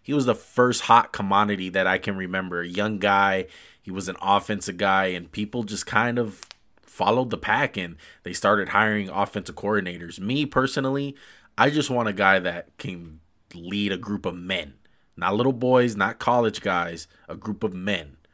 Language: English